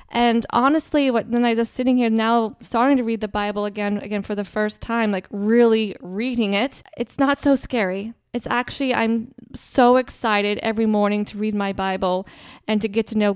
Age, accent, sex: 20-39, American, female